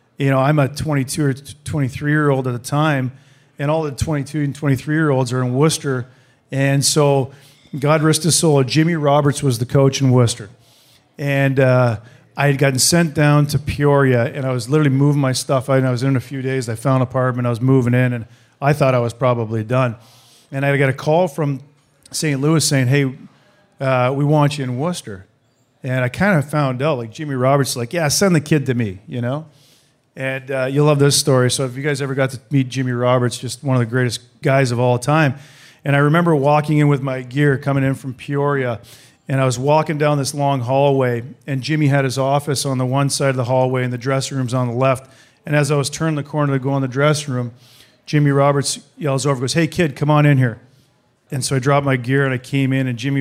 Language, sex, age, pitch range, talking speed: English, male, 40-59, 130-145 Hz, 230 wpm